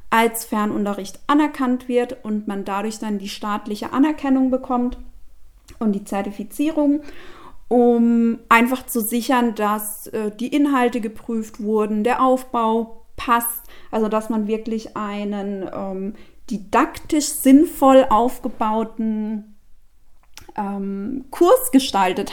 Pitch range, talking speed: 215-265 Hz, 110 wpm